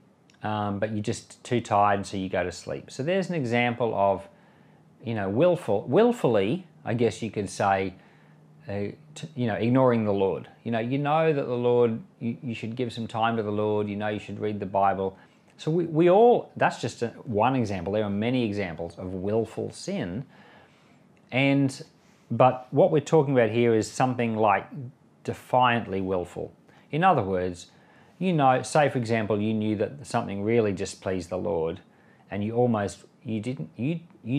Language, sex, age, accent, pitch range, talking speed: English, male, 40-59, Australian, 100-130 Hz, 185 wpm